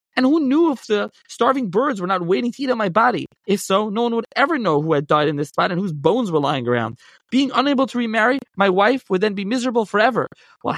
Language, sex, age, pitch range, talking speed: English, male, 20-39, 165-220 Hz, 255 wpm